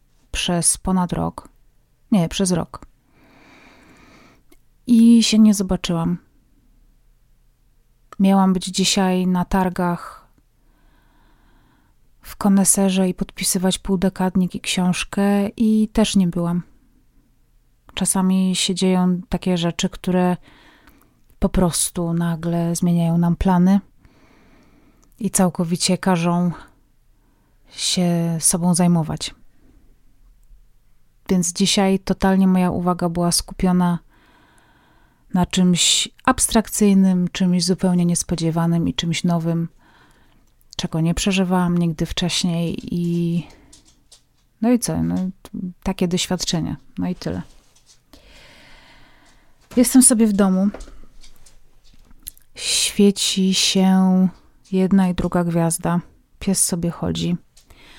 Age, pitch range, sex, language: 30-49, 170-195 Hz, female, Polish